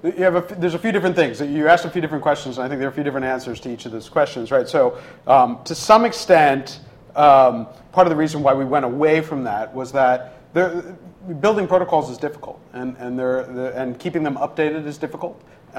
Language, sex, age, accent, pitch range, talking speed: English, male, 40-59, American, 120-145 Hz, 230 wpm